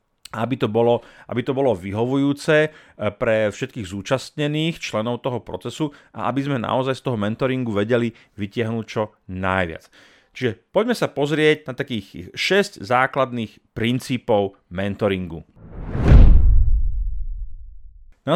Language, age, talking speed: Slovak, 30-49, 115 wpm